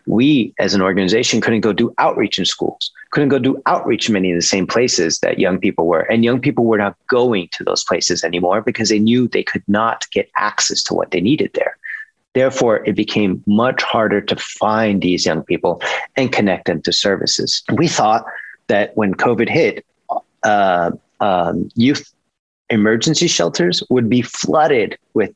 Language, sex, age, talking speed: English, male, 30-49, 180 wpm